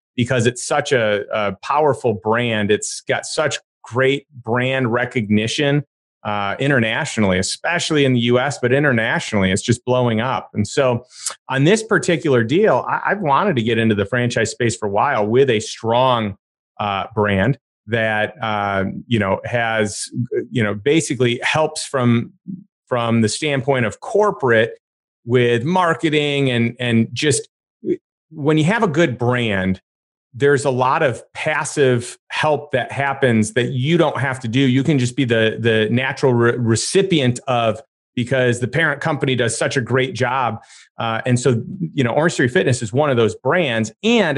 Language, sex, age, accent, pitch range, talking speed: English, male, 30-49, American, 115-140 Hz, 160 wpm